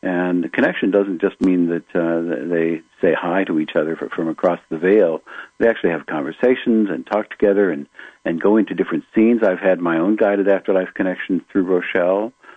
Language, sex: English, male